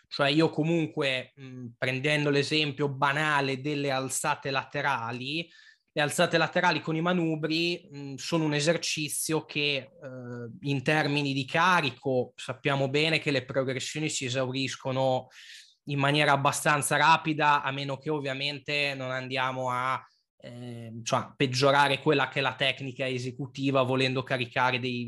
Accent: native